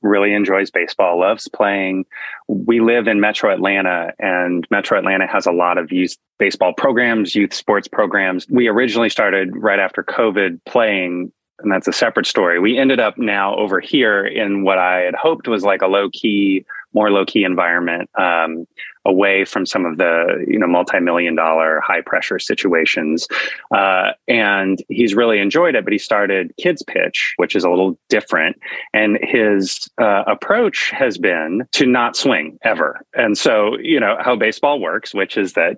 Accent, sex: American, male